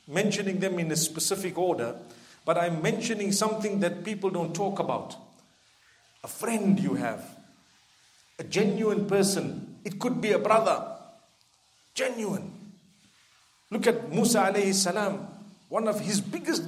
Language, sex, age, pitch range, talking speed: English, male, 50-69, 185-220 Hz, 125 wpm